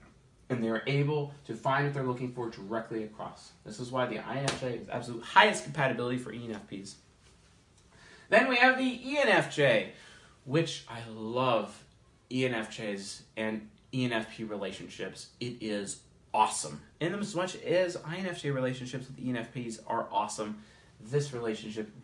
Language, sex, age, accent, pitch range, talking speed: English, male, 30-49, American, 110-140 Hz, 140 wpm